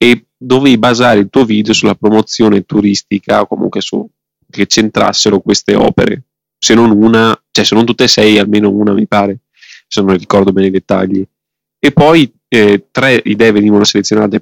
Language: Italian